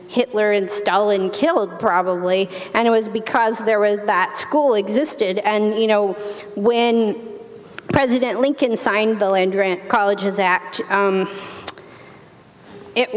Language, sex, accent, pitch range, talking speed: English, female, American, 190-225 Hz, 130 wpm